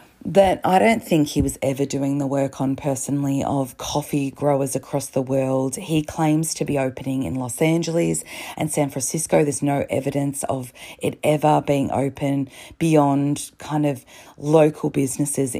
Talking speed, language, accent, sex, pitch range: 160 wpm, English, Australian, female, 140-180 Hz